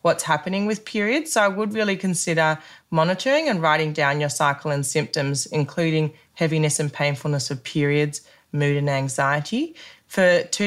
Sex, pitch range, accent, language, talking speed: female, 140-180 Hz, Australian, English, 155 wpm